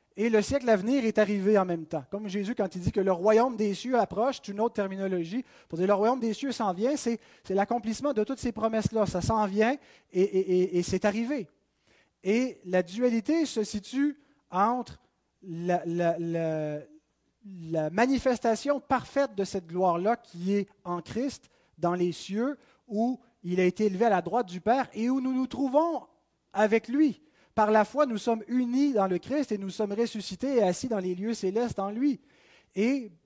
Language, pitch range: French, 185-235 Hz